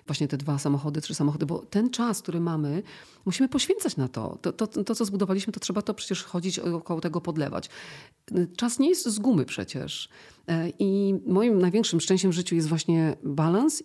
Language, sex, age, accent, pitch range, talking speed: Polish, female, 40-59, native, 155-190 Hz, 185 wpm